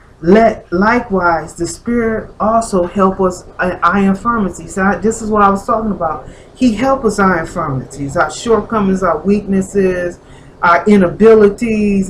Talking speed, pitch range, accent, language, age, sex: 140 wpm, 175-225 Hz, American, English, 40-59, female